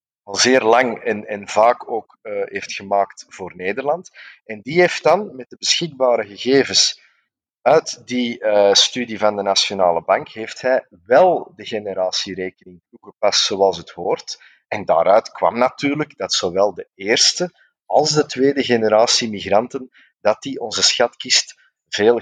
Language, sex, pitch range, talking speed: Dutch, male, 100-140 Hz, 150 wpm